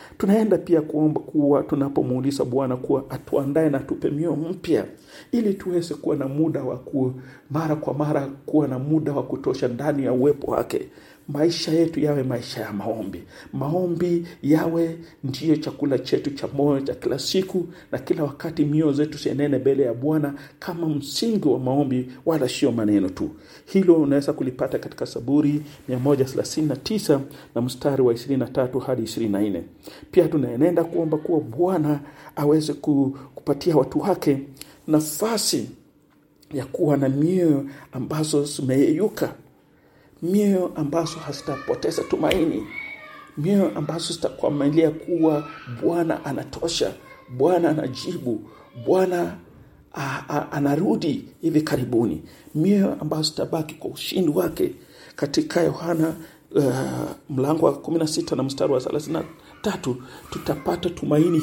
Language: English